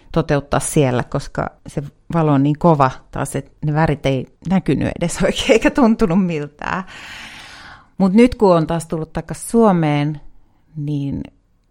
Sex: female